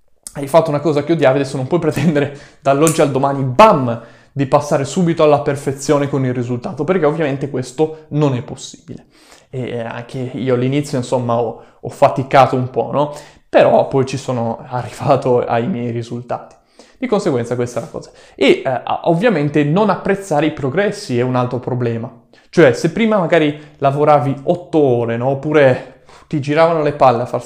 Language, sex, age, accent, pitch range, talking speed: Italian, male, 20-39, native, 130-165 Hz, 175 wpm